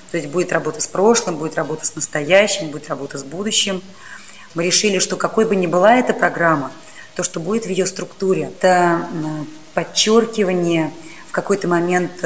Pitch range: 160-190 Hz